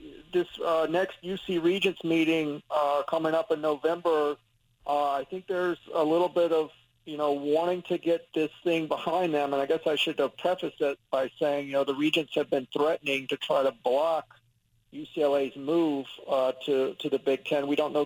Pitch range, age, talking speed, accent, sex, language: 140-170 Hz, 50-69, 195 wpm, American, male, English